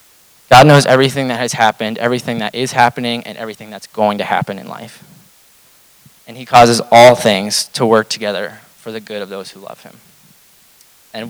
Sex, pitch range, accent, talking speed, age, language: male, 110-125 Hz, American, 185 wpm, 20-39, English